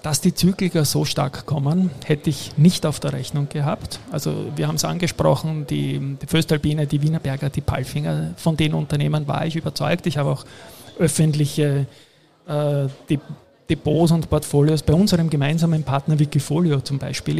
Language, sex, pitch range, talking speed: German, male, 135-155 Hz, 160 wpm